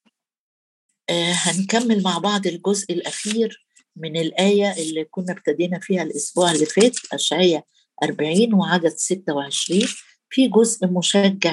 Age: 50-69